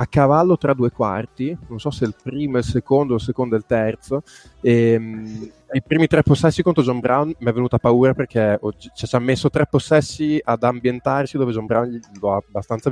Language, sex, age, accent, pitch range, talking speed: Italian, male, 20-39, native, 115-145 Hz, 230 wpm